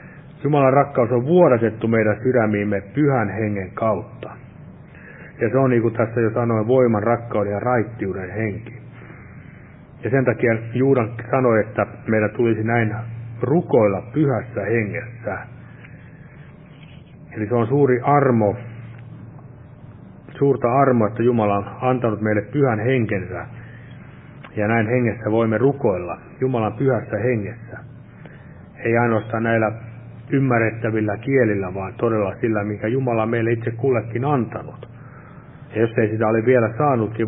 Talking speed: 125 wpm